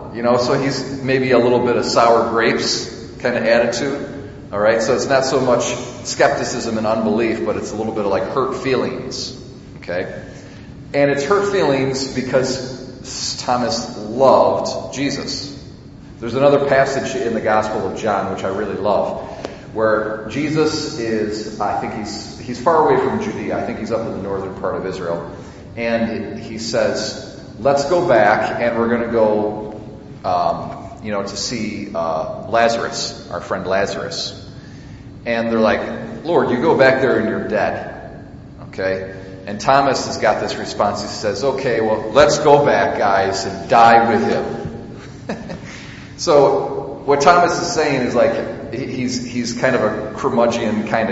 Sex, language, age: male, English, 40-59